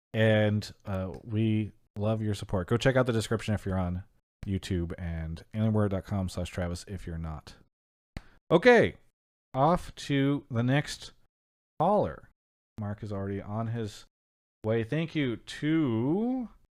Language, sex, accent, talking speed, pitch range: English, male, American, 135 wpm, 95-125 Hz